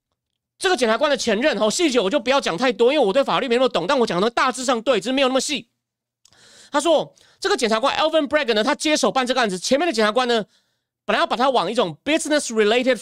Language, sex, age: Chinese, male, 30-49